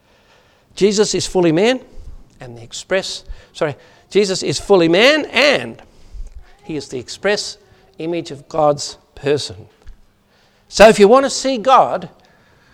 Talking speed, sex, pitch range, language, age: 130 wpm, male, 130-190 Hz, English, 60-79